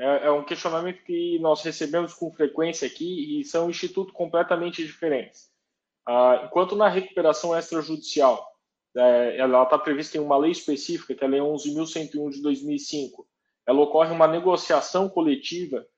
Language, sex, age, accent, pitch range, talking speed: Portuguese, male, 20-39, Brazilian, 140-190 Hz, 145 wpm